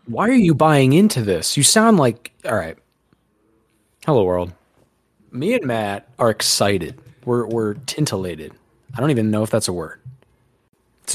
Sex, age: male, 30-49